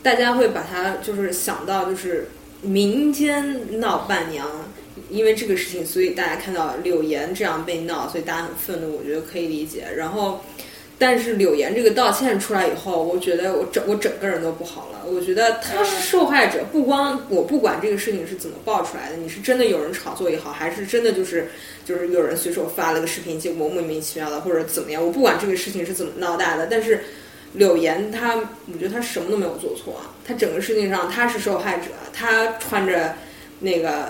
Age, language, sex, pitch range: 20-39, Chinese, female, 170-225 Hz